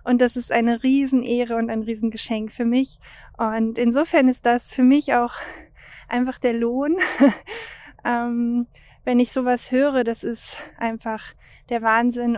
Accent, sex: German, female